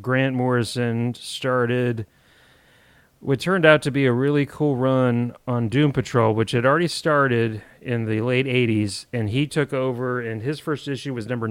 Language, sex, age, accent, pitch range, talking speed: English, male, 30-49, American, 115-140 Hz, 170 wpm